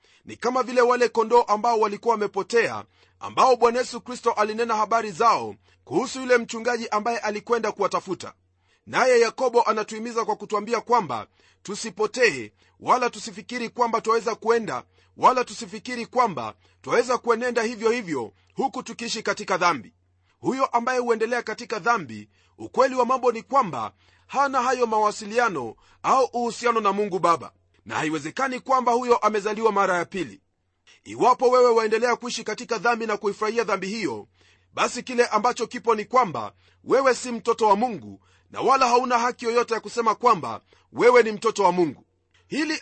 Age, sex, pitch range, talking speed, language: 40-59, male, 205-245 Hz, 150 wpm, Swahili